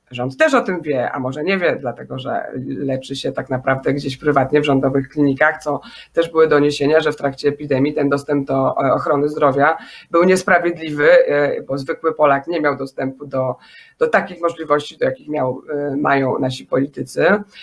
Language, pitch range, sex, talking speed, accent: Polish, 145-205 Hz, female, 170 wpm, native